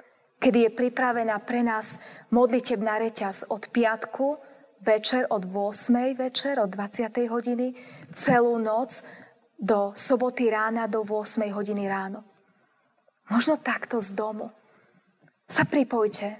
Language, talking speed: Slovak, 115 wpm